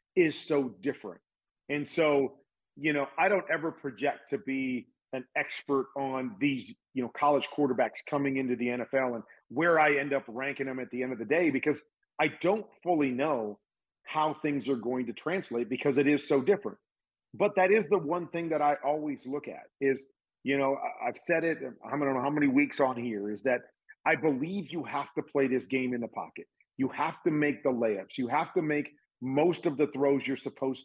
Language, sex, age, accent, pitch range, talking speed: English, male, 40-59, American, 130-165 Hz, 210 wpm